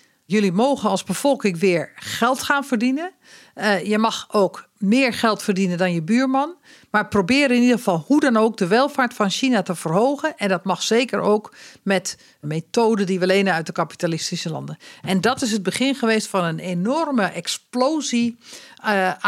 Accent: Dutch